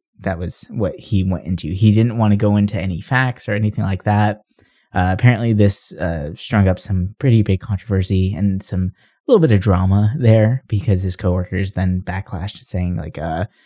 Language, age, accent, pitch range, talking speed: English, 20-39, American, 95-120 Hz, 190 wpm